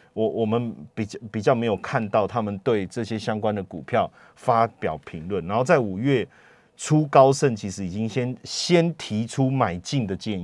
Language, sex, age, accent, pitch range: Chinese, male, 30-49, native, 105-140 Hz